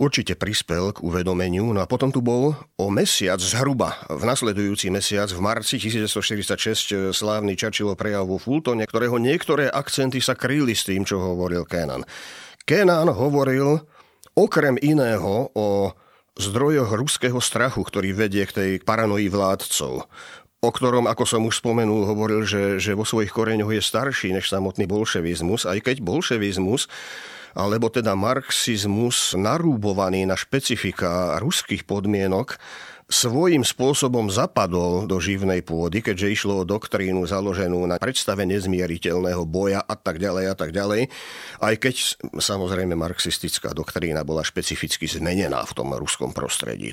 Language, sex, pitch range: Slovak, male, 95-120 Hz